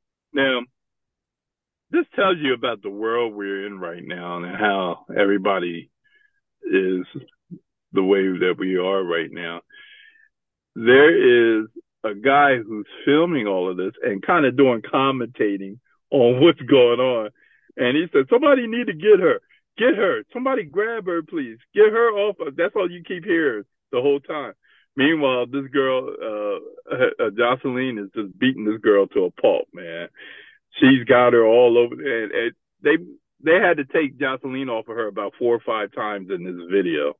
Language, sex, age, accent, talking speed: English, male, 50-69, American, 170 wpm